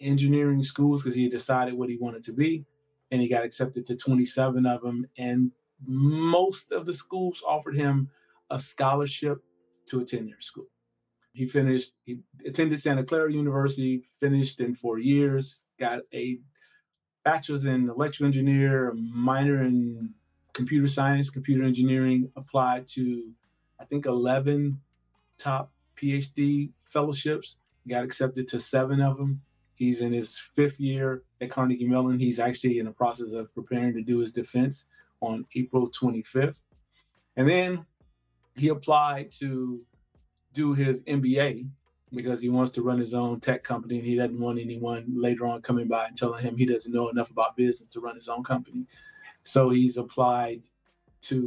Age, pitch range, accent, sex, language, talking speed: 30-49, 120-140 Hz, American, male, English, 155 wpm